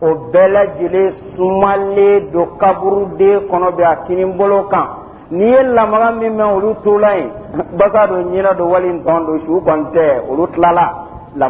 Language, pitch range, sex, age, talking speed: Italian, 180-225 Hz, male, 50-69, 115 wpm